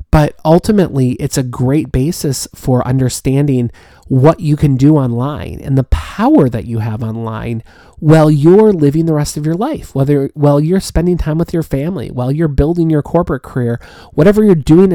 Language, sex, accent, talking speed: English, male, American, 180 wpm